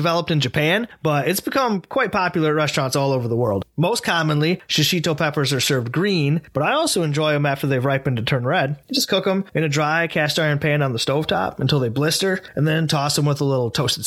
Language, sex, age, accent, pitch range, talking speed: English, male, 20-39, American, 145-180 Hz, 240 wpm